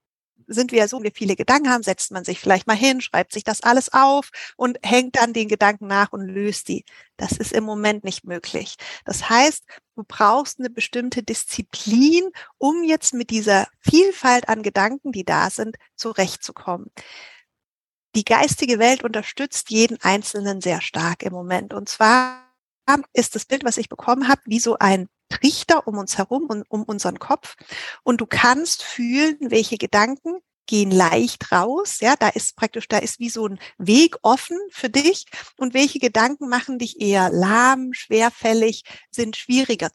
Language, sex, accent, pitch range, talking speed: German, female, German, 215-270 Hz, 170 wpm